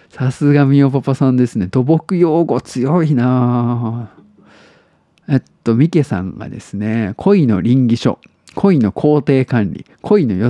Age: 50-69